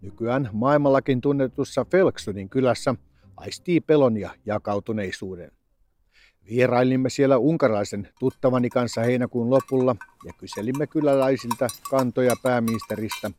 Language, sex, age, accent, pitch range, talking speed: Finnish, male, 60-79, native, 110-140 Hz, 95 wpm